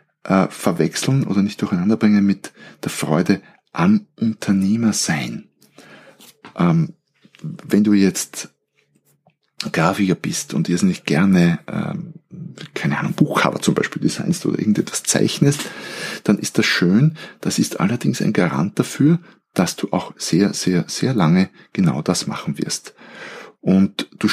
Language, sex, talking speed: German, male, 130 wpm